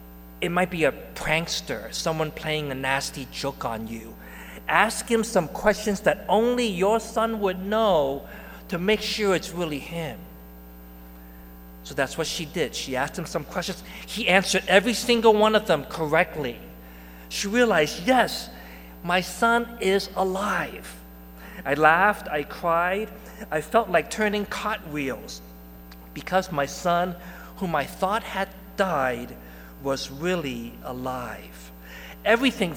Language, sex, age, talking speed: English, male, 40-59, 135 wpm